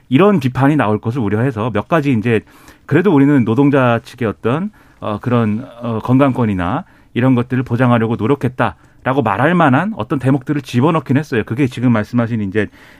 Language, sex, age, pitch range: Korean, male, 40-59, 115-160 Hz